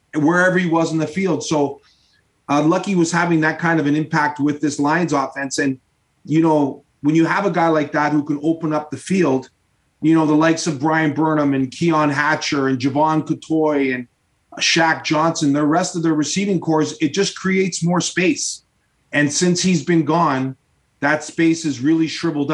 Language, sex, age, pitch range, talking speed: English, male, 30-49, 145-170 Hz, 195 wpm